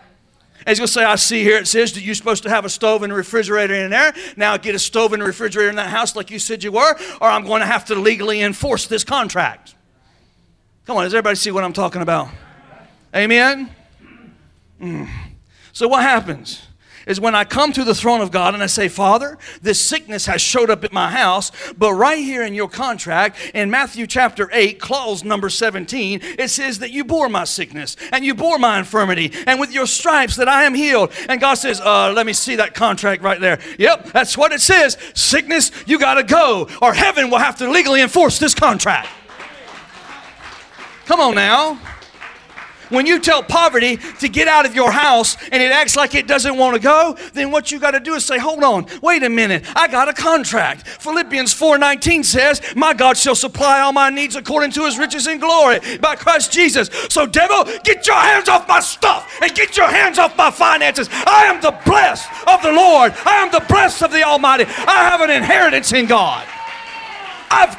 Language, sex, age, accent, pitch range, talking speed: English, male, 40-59, American, 215-310 Hz, 210 wpm